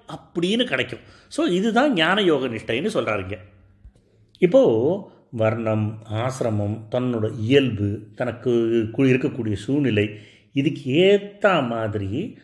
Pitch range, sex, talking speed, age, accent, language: 115-180 Hz, male, 75 wpm, 30-49, native, Tamil